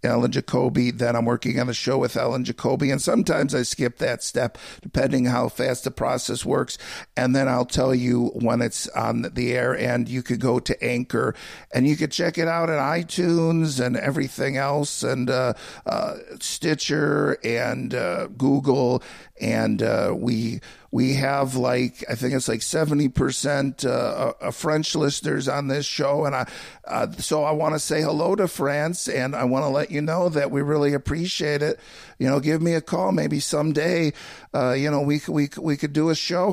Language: English